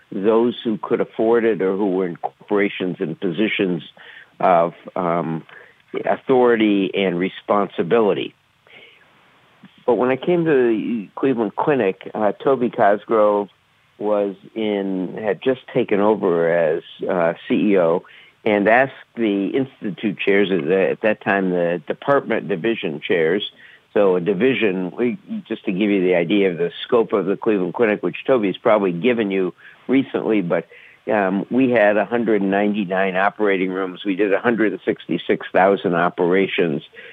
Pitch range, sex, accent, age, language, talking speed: 95-115 Hz, male, American, 60-79, English, 135 wpm